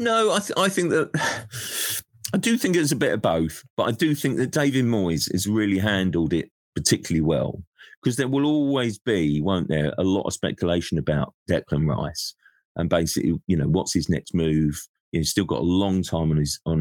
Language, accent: English, British